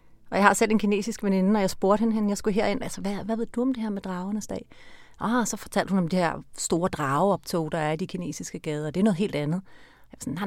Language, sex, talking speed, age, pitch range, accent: Danish, female, 275 wpm, 40-59, 175-225 Hz, native